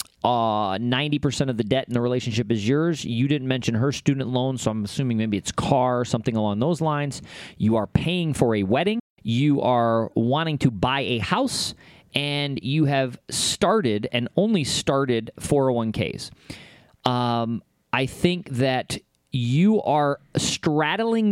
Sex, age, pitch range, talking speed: male, 40-59, 120-160 Hz, 155 wpm